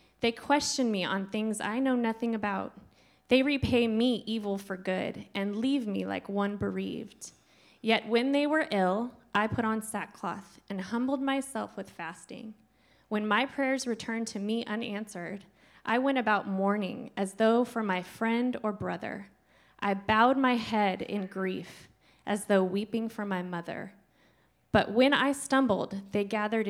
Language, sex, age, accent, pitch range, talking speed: English, female, 20-39, American, 200-240 Hz, 160 wpm